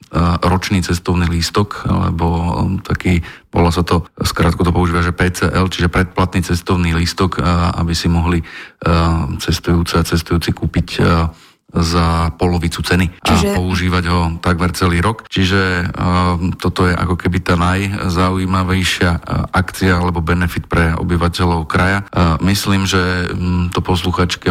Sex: male